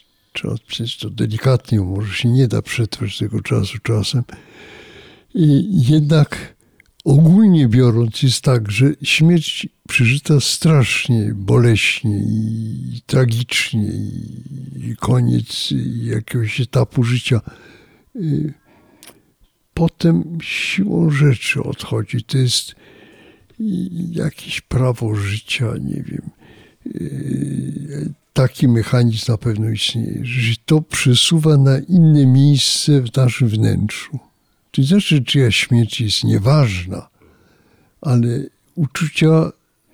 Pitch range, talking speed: 110-140 Hz, 95 wpm